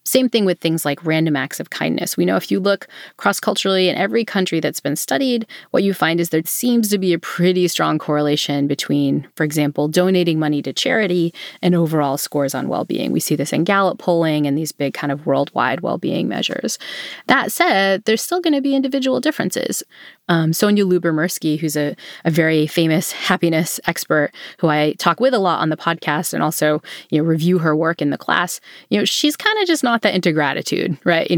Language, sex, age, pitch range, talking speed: English, female, 30-49, 160-225 Hz, 210 wpm